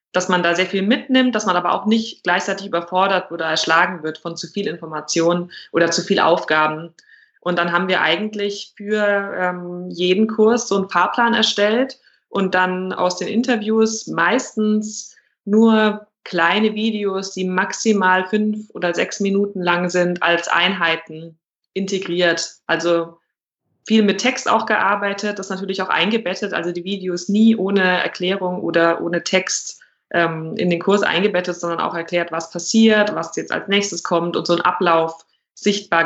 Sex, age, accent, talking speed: female, 20-39, German, 160 wpm